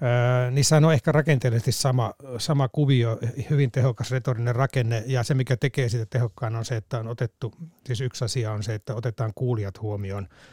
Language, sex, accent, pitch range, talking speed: Finnish, male, native, 115-145 Hz, 175 wpm